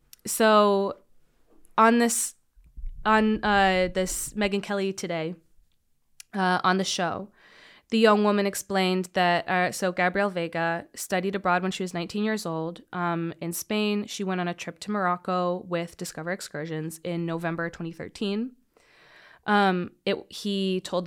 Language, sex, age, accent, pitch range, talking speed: English, female, 20-39, American, 170-195 Hz, 140 wpm